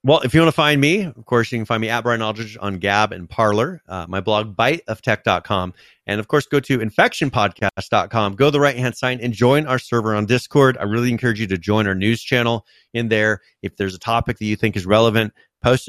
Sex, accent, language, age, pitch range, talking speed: male, American, English, 30-49, 100-120 Hz, 235 wpm